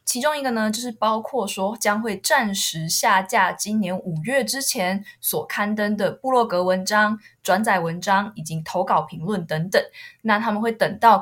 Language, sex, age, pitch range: Chinese, female, 20-39, 185-235 Hz